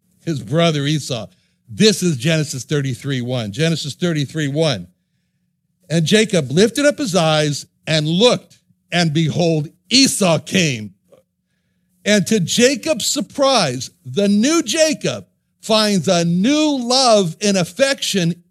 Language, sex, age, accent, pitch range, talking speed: English, male, 60-79, American, 160-230 Hz, 115 wpm